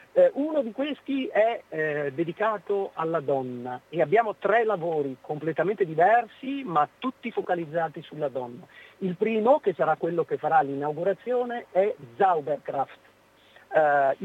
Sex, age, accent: male, 50-69, native